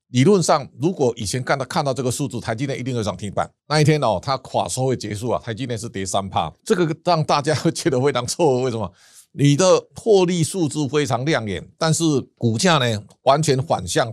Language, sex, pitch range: Chinese, male, 115-150 Hz